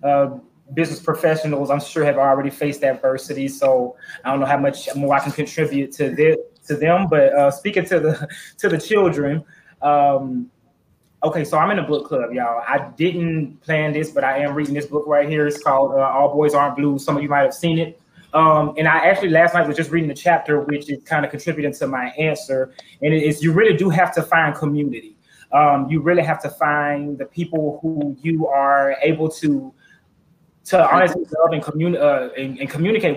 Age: 20-39